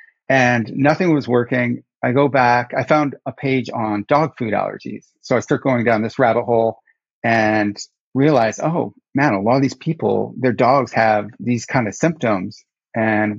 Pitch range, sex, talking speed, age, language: 110-135 Hz, male, 180 wpm, 40-59, English